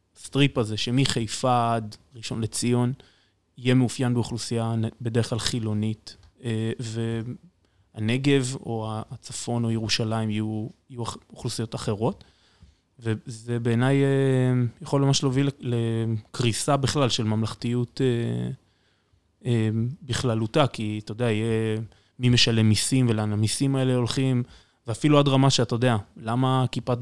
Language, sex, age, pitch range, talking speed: Hebrew, male, 20-39, 110-130 Hz, 105 wpm